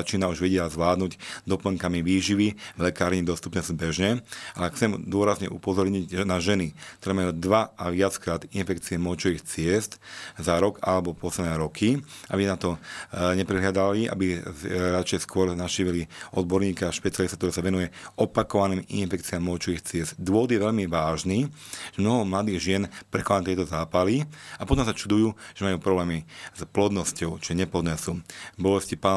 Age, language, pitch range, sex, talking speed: 40-59, Slovak, 90-100 Hz, male, 145 wpm